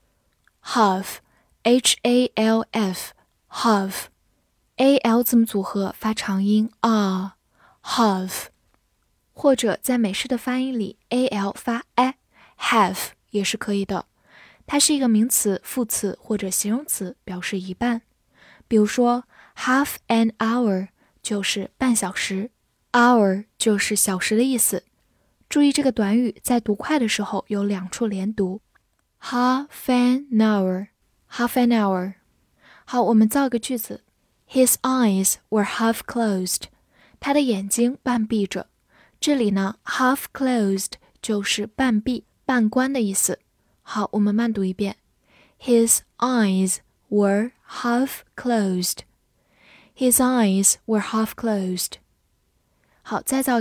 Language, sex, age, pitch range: Chinese, female, 10-29, 195-245 Hz